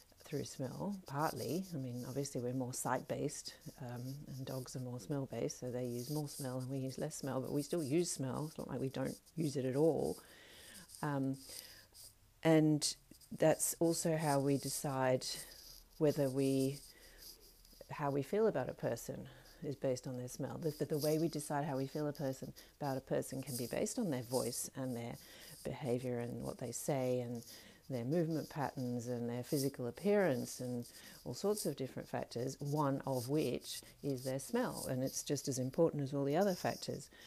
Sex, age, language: female, 40-59, English